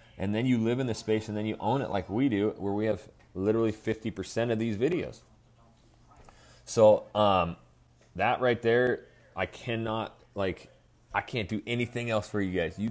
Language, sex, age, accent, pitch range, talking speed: English, male, 30-49, American, 95-115 Hz, 185 wpm